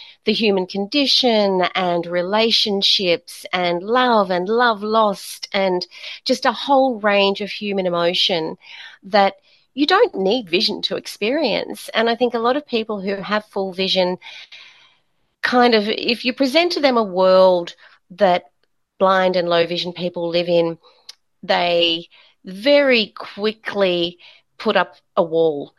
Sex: female